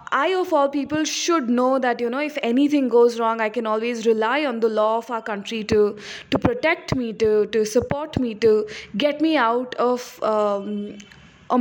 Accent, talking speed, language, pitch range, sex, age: Indian, 190 wpm, English, 225-280 Hz, female, 20-39